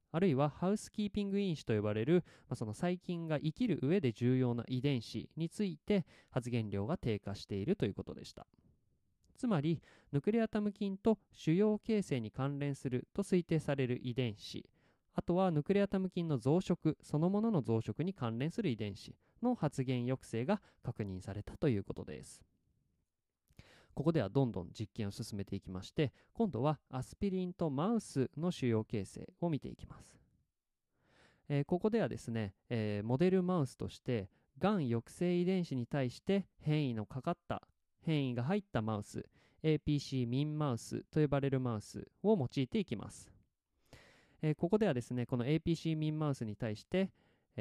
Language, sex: Japanese, male